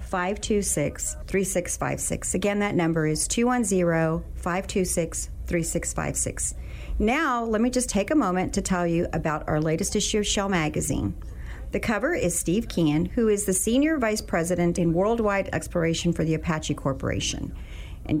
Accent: American